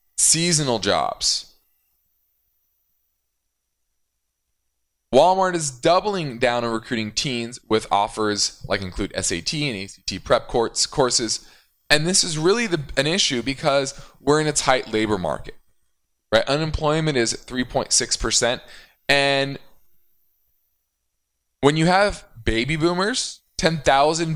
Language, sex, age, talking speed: English, male, 20-39, 110 wpm